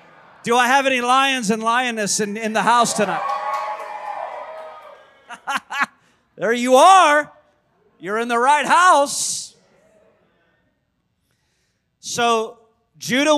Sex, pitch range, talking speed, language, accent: male, 200-250 Hz, 100 wpm, English, American